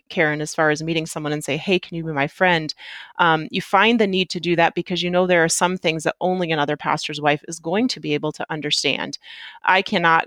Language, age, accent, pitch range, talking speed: English, 30-49, American, 155-185 Hz, 250 wpm